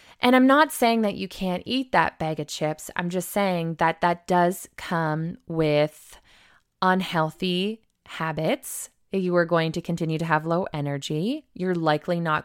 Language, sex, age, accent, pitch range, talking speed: English, female, 20-39, American, 160-190 Hz, 165 wpm